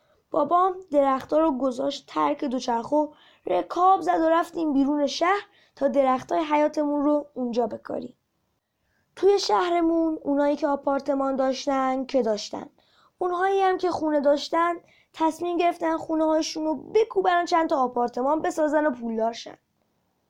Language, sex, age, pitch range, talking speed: Persian, female, 20-39, 280-355 Hz, 125 wpm